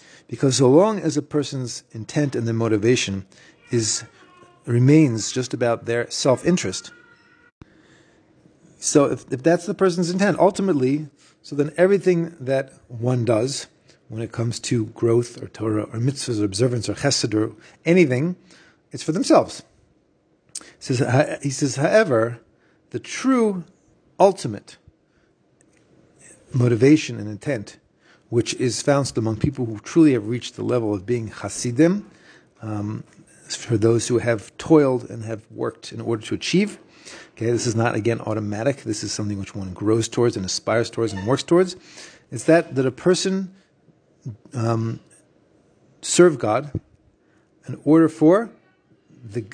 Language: English